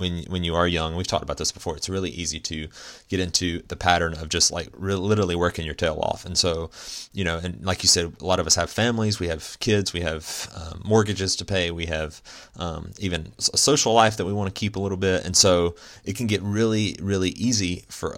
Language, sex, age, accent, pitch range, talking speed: English, male, 30-49, American, 85-100 Hz, 240 wpm